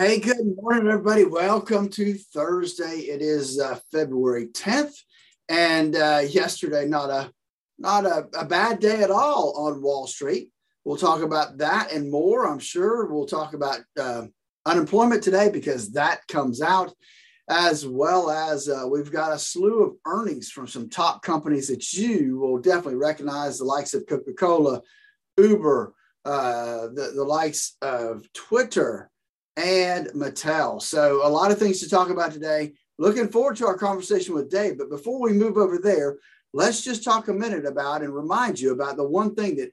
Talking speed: 170 wpm